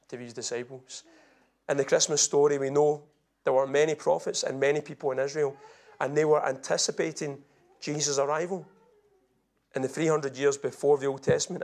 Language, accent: English, British